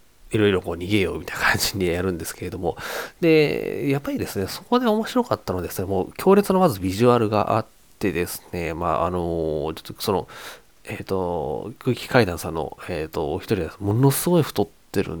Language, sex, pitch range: Japanese, male, 90-140 Hz